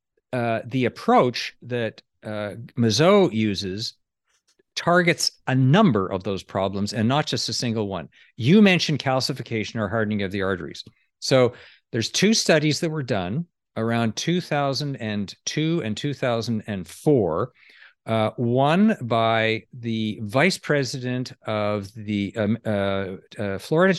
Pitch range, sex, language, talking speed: 110-155 Hz, male, English, 125 wpm